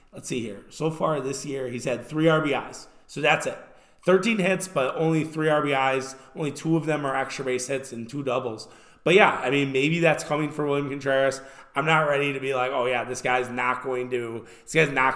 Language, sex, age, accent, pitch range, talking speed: English, male, 20-39, American, 130-150 Hz, 225 wpm